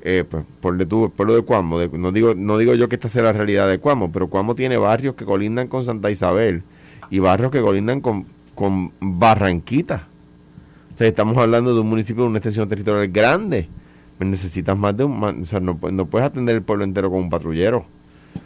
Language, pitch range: Spanish, 95-115 Hz